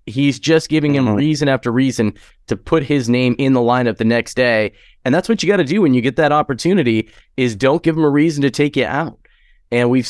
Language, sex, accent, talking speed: English, male, American, 245 wpm